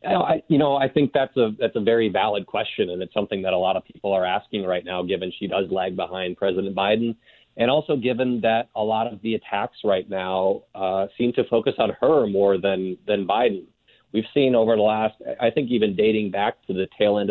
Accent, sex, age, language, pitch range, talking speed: American, male, 30-49, English, 95-110 Hz, 225 wpm